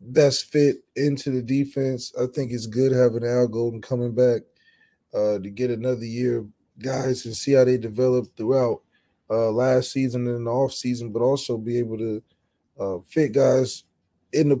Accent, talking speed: American, 175 wpm